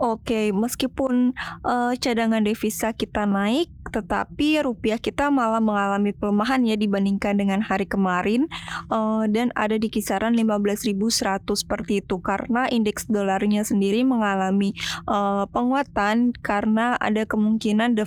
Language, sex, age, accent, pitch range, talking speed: Indonesian, female, 20-39, native, 200-230 Hz, 125 wpm